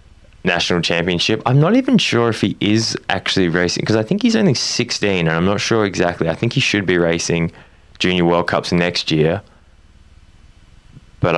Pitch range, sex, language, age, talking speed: 75-90 Hz, male, English, 20-39, 180 wpm